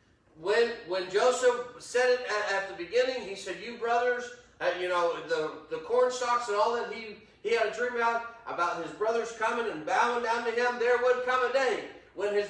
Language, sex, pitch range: English, male, 225-270 Hz